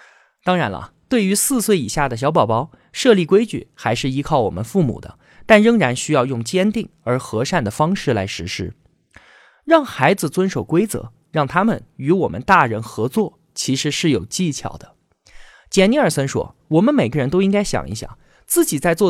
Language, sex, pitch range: Chinese, male, 130-205 Hz